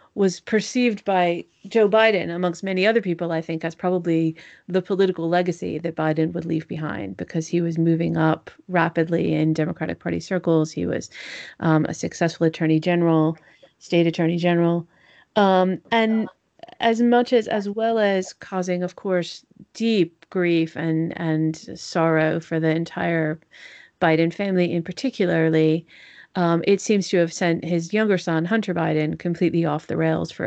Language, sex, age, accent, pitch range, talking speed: English, female, 30-49, American, 165-185 Hz, 160 wpm